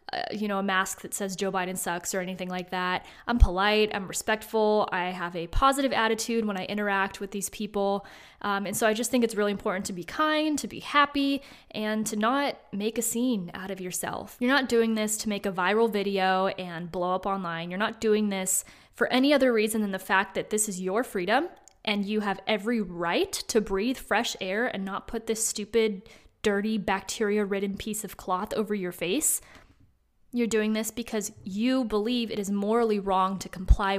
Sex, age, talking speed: female, 20-39, 205 wpm